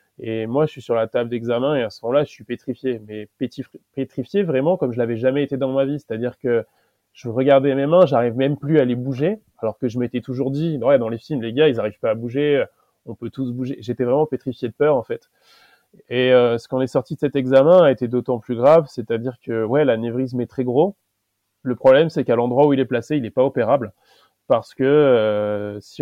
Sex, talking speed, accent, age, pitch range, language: male, 245 wpm, French, 20-39, 115-135 Hz, French